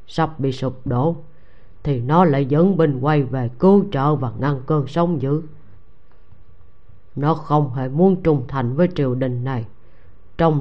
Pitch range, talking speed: 130-165 Hz, 165 wpm